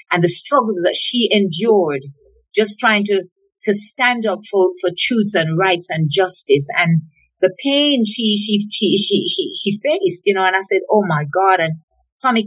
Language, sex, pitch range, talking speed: English, female, 175-240 Hz, 190 wpm